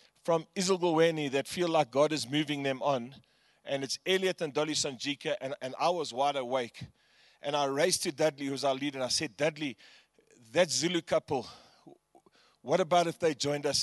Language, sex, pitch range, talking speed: English, male, 135-160 Hz, 185 wpm